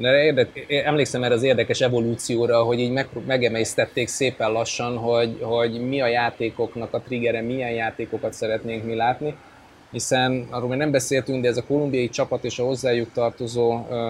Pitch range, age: 115-140 Hz, 20-39